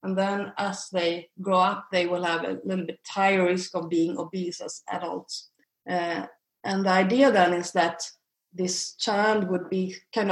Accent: Swedish